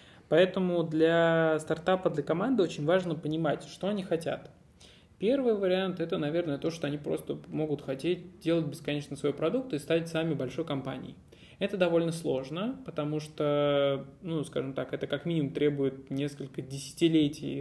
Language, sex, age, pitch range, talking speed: Russian, male, 20-39, 145-170 Hz, 150 wpm